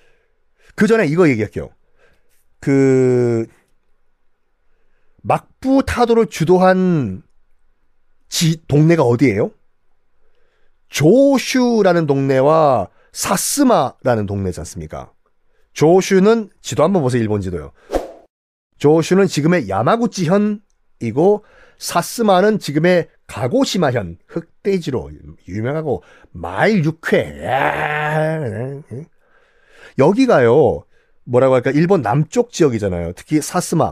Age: 40-59